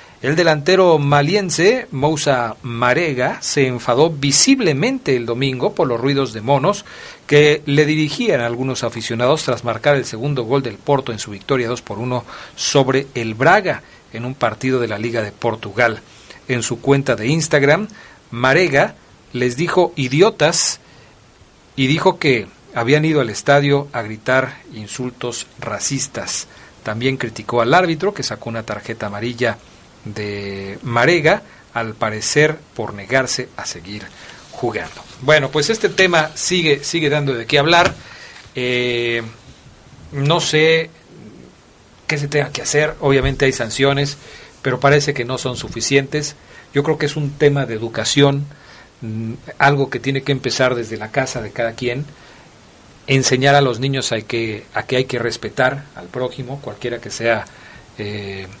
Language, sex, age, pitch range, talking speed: Spanish, male, 40-59, 115-145 Hz, 150 wpm